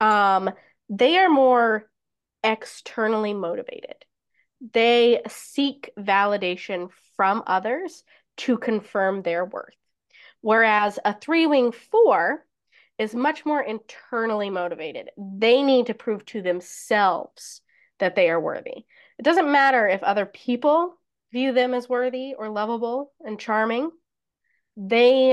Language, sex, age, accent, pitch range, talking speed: English, female, 20-39, American, 205-260 Hz, 120 wpm